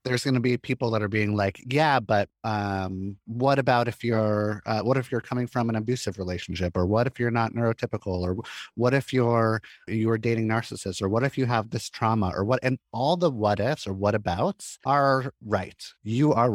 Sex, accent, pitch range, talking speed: male, American, 100-130 Hz, 215 wpm